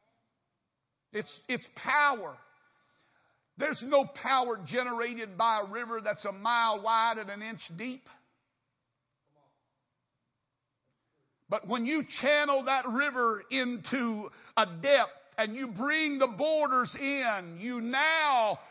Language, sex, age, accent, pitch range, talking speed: English, male, 50-69, American, 230-280 Hz, 110 wpm